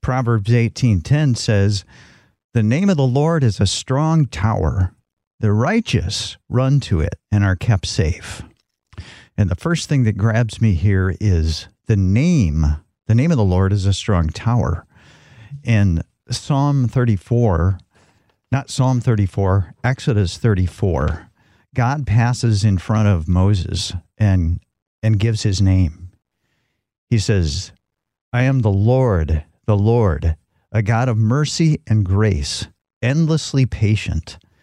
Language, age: English, 50-69